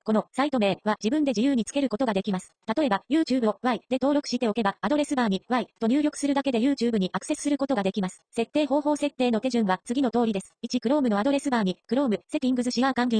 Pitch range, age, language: 210-280 Hz, 30-49, Japanese